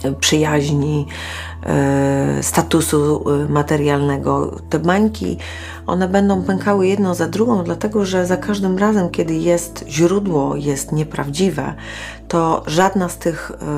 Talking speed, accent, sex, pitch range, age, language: 95 wpm, native, female, 135-185 Hz, 30-49, Polish